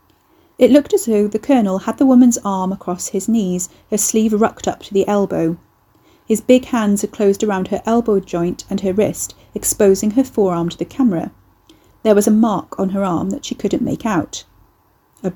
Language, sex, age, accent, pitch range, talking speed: English, female, 30-49, British, 180-225 Hz, 200 wpm